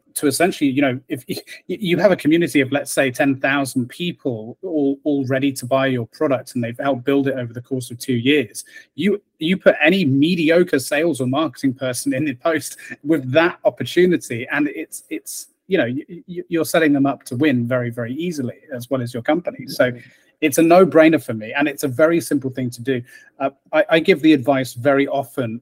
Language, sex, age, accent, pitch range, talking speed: English, male, 30-49, British, 130-165 Hz, 210 wpm